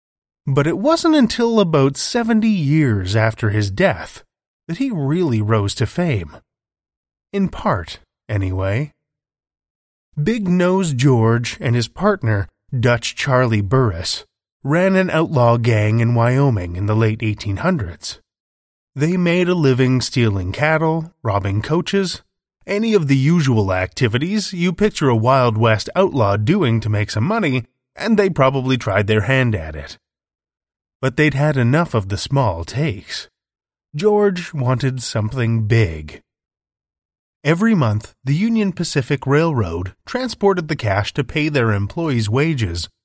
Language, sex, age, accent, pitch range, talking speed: English, male, 30-49, American, 105-160 Hz, 135 wpm